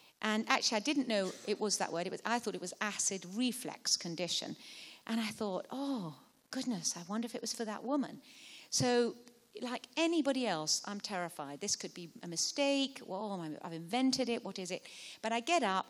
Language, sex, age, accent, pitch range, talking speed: English, female, 40-59, British, 195-260 Hz, 195 wpm